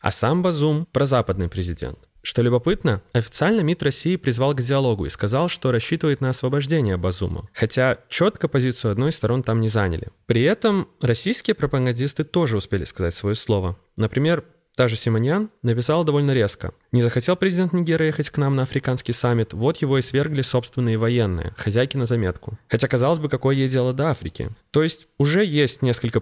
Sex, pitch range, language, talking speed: male, 115-150 Hz, Russian, 180 wpm